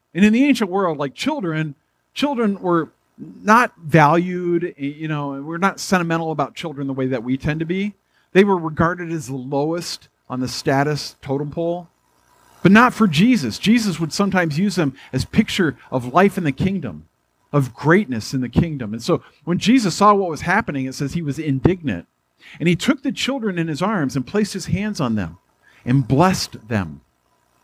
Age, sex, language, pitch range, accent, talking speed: 50-69, male, English, 140-195 Hz, American, 190 wpm